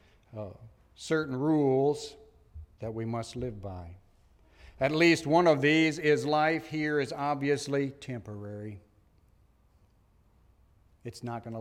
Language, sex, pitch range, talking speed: English, male, 100-130 Hz, 120 wpm